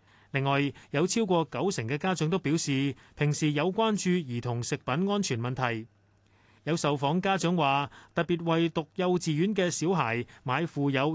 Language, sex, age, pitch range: Chinese, male, 30-49, 130-180 Hz